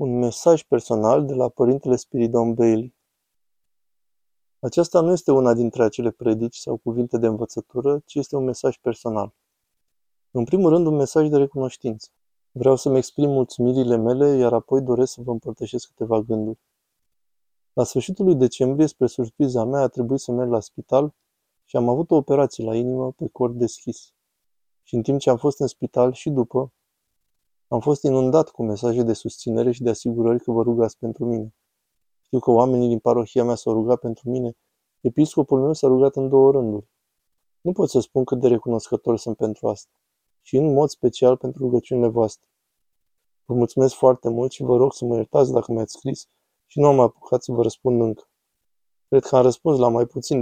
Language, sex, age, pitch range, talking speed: Romanian, male, 20-39, 115-135 Hz, 185 wpm